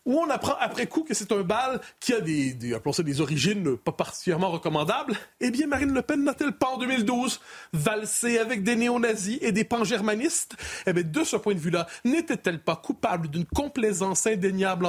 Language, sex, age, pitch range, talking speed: French, male, 30-49, 175-245 Hz, 190 wpm